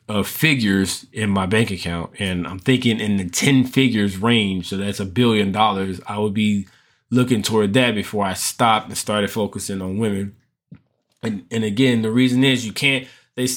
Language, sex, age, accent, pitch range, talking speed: English, male, 20-39, American, 105-130 Hz, 185 wpm